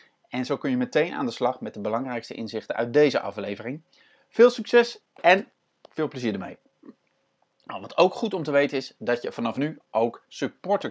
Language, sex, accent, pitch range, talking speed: Dutch, male, Dutch, 115-170 Hz, 185 wpm